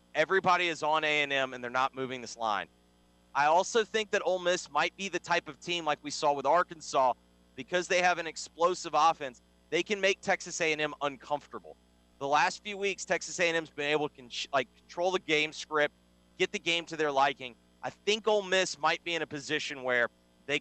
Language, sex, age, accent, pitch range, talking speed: English, male, 30-49, American, 120-160 Hz, 205 wpm